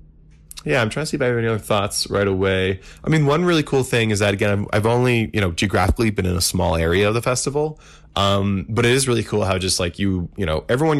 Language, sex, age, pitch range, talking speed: English, male, 20-39, 85-105 Hz, 260 wpm